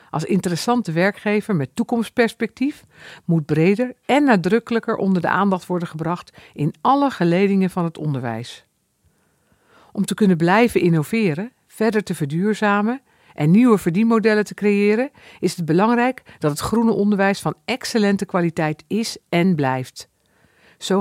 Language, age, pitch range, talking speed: Dutch, 50-69, 165-215 Hz, 135 wpm